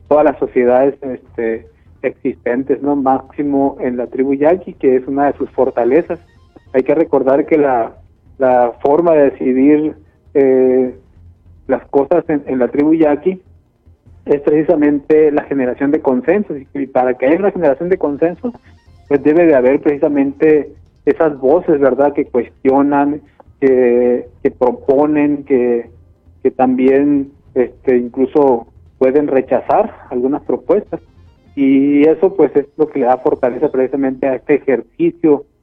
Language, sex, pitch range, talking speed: English, male, 125-145 Hz, 140 wpm